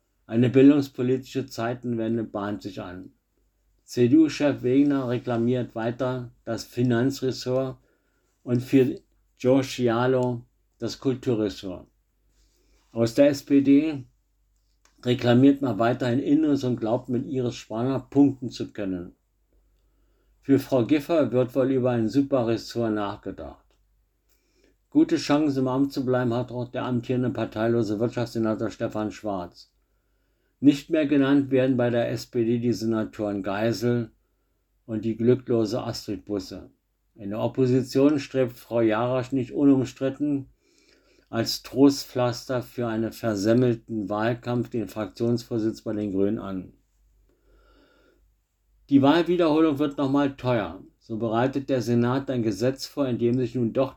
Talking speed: 120 wpm